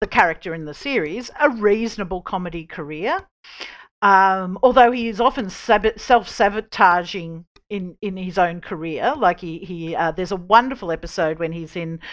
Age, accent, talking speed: 50-69, Australian, 165 wpm